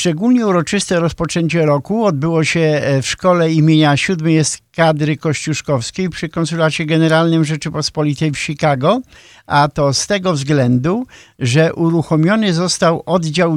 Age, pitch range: 50-69, 130-170 Hz